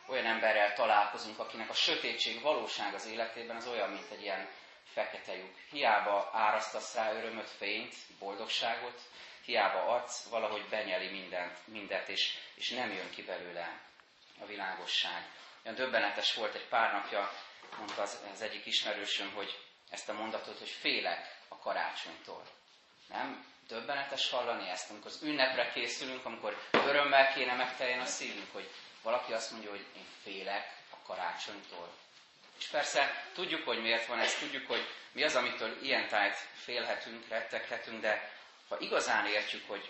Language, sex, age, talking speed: Hungarian, male, 30-49, 145 wpm